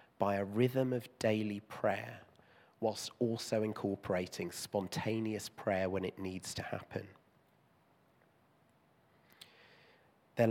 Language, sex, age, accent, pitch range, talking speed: English, male, 30-49, British, 105-125 Hz, 95 wpm